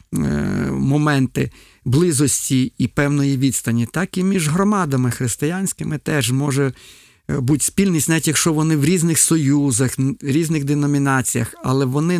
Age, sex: 50-69, male